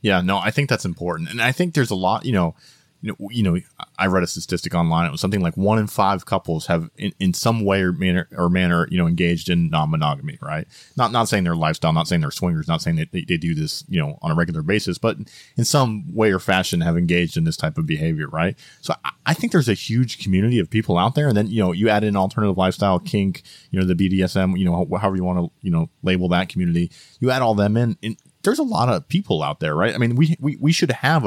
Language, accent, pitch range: English, American, 90-135 Hz